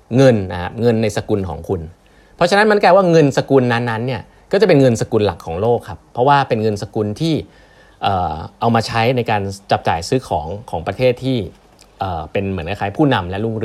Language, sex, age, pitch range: Thai, male, 20-39, 100-130 Hz